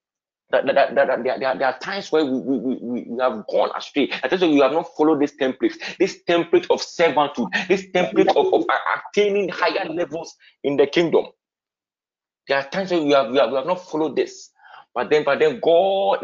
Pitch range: 140-195 Hz